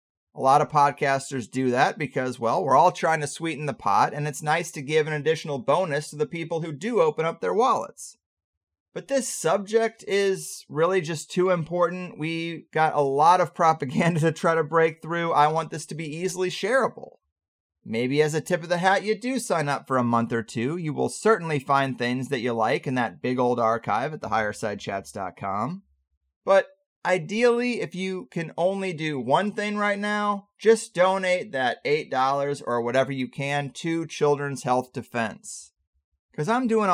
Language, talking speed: English, 185 wpm